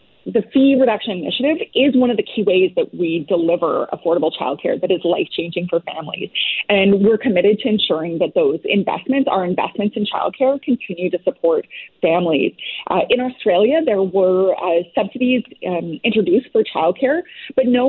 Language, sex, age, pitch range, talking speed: English, female, 30-49, 180-250 Hz, 170 wpm